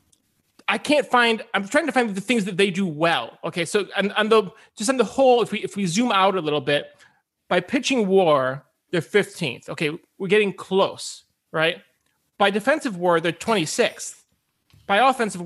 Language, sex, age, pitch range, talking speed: English, male, 30-49, 165-220 Hz, 185 wpm